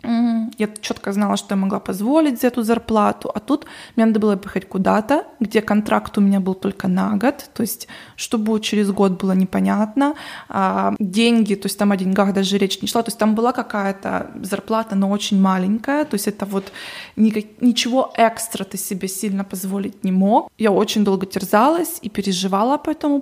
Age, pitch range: 20-39, 195-230 Hz